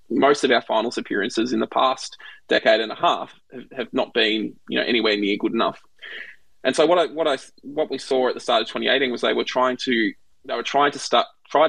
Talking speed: 240 wpm